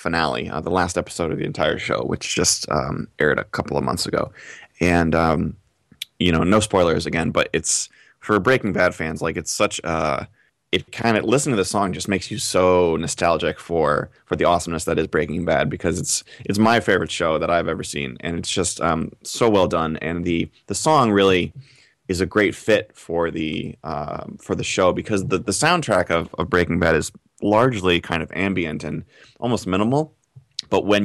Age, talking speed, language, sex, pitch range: 20-39, 205 wpm, English, male, 80-100 Hz